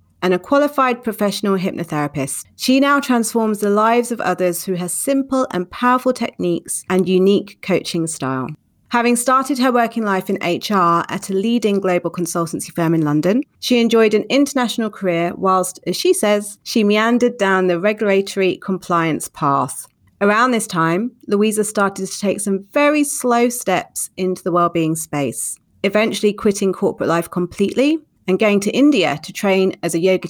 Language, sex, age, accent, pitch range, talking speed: English, female, 30-49, British, 180-230 Hz, 160 wpm